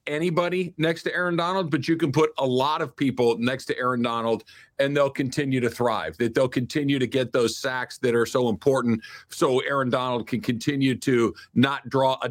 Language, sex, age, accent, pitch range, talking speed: English, male, 50-69, American, 125-155 Hz, 205 wpm